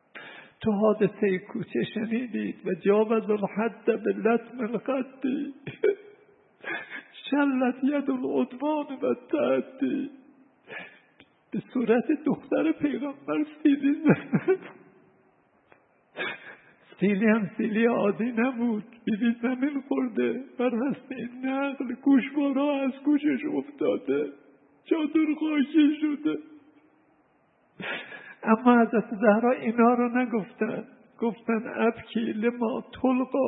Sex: male